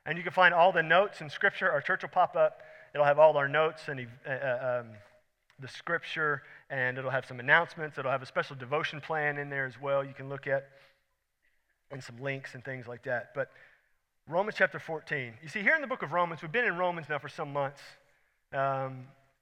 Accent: American